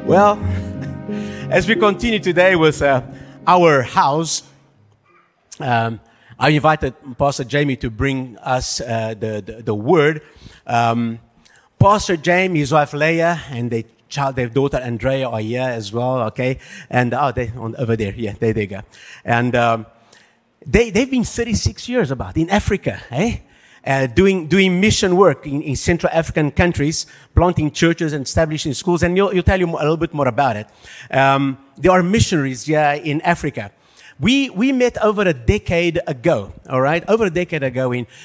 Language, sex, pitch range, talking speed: English, male, 125-175 Hz, 170 wpm